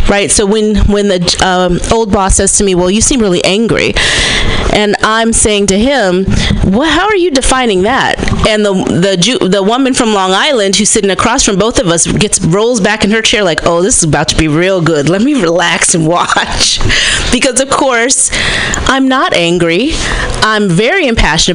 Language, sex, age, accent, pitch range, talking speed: English, female, 30-49, American, 185-230 Hz, 200 wpm